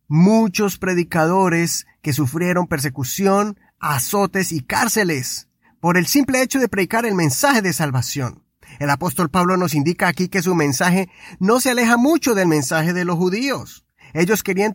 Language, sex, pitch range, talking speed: Spanish, male, 160-210 Hz, 155 wpm